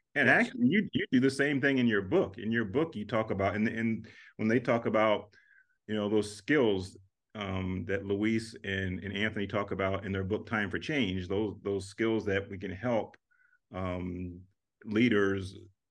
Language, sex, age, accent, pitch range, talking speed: English, male, 40-59, American, 100-110 Hz, 190 wpm